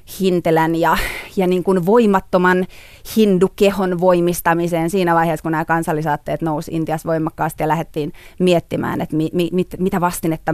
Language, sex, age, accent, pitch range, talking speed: Finnish, female, 30-49, native, 155-180 Hz, 135 wpm